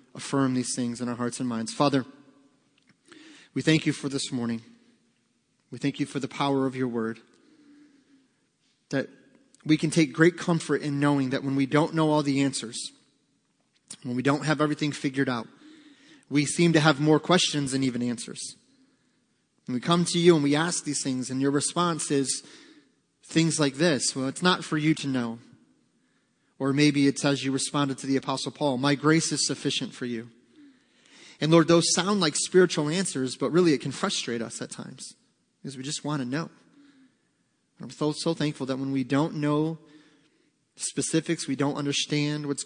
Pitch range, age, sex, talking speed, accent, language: 130-160 Hz, 30-49, male, 185 wpm, American, English